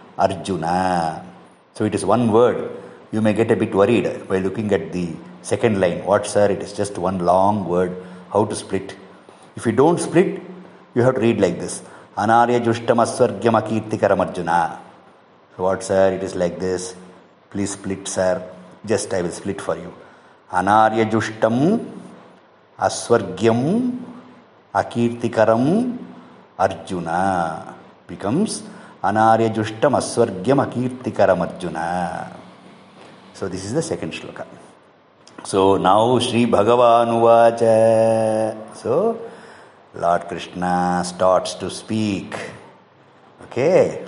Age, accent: 50-69, Indian